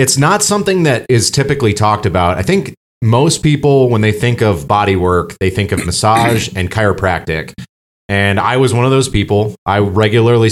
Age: 30-49